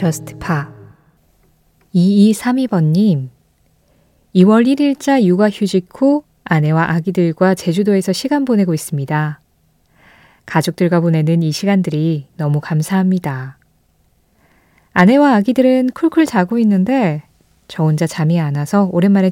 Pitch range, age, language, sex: 160-220 Hz, 20-39, Korean, female